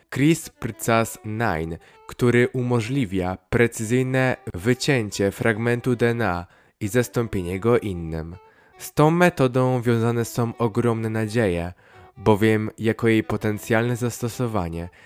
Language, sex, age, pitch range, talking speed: Polish, male, 20-39, 100-125 Hz, 90 wpm